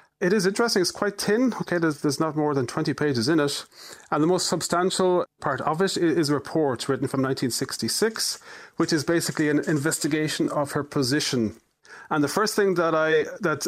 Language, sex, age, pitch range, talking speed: English, male, 30-49, 135-175 Hz, 195 wpm